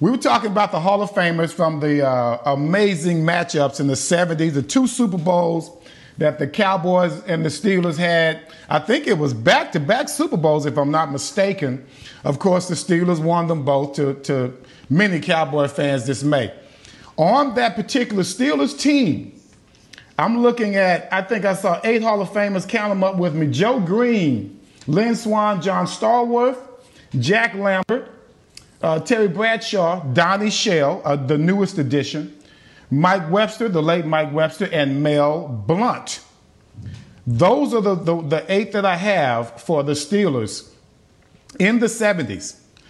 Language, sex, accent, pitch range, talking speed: English, male, American, 145-210 Hz, 160 wpm